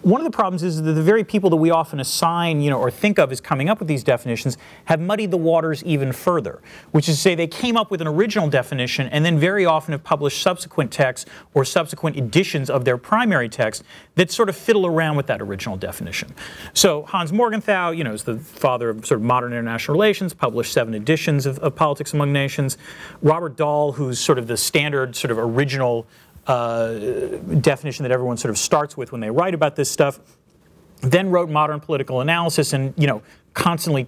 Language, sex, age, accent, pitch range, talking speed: English, male, 40-59, American, 125-175 Hz, 210 wpm